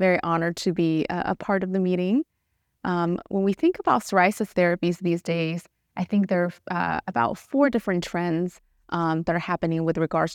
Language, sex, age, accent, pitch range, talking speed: English, female, 30-49, American, 165-185 Hz, 190 wpm